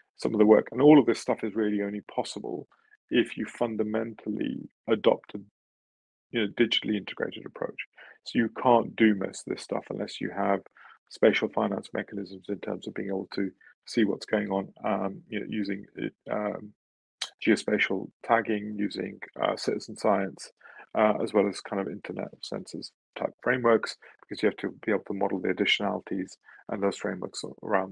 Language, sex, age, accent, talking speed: English, male, 30-49, British, 175 wpm